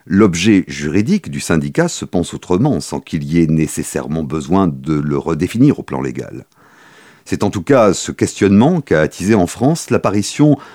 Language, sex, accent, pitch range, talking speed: French, male, French, 85-115 Hz, 170 wpm